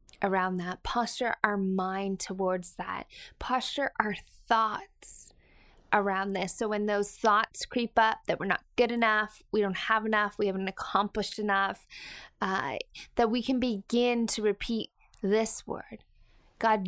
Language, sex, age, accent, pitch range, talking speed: English, female, 20-39, American, 205-240 Hz, 145 wpm